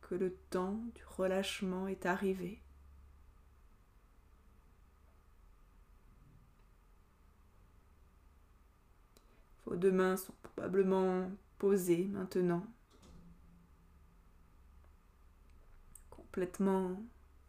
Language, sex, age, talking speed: French, female, 20-39, 50 wpm